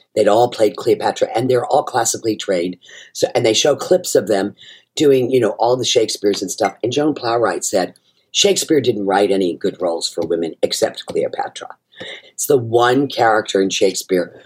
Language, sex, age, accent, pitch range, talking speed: English, female, 50-69, American, 110-155 Hz, 185 wpm